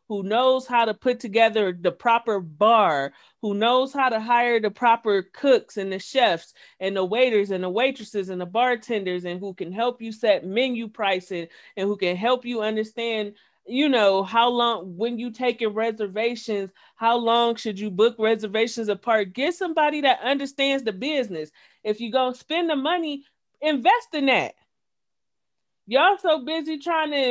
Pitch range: 210-260 Hz